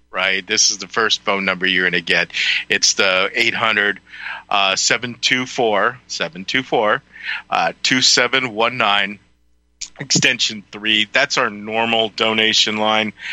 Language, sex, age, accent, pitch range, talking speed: English, male, 40-59, American, 95-115 Hz, 115 wpm